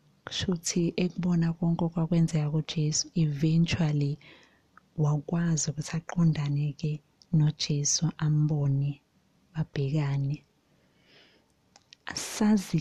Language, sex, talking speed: English, female, 70 wpm